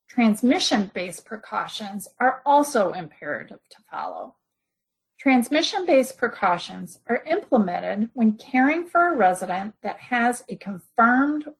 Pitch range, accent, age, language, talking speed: 200-275 Hz, American, 40-59, English, 105 wpm